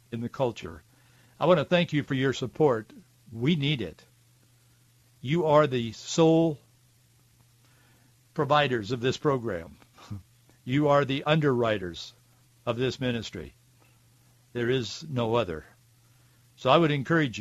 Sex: male